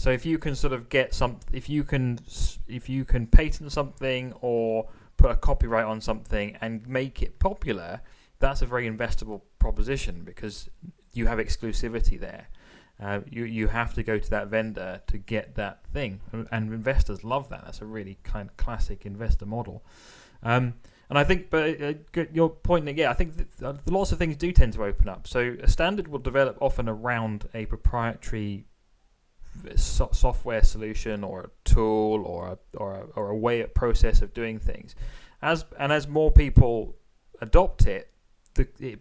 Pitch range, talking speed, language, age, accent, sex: 105-130 Hz, 180 wpm, English, 20-39, British, male